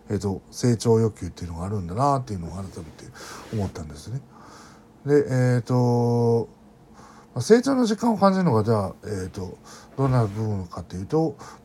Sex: male